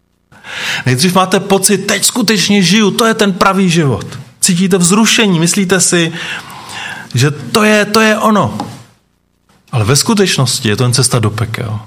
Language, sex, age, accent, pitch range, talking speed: Czech, male, 30-49, native, 125-195 Hz, 150 wpm